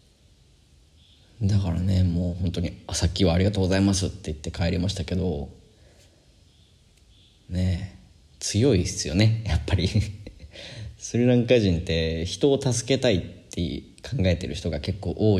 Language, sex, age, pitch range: Japanese, male, 20-39, 85-105 Hz